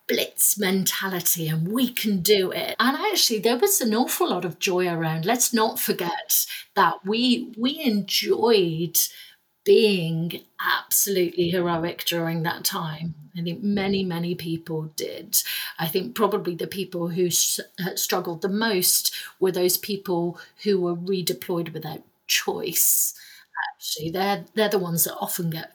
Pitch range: 170-210 Hz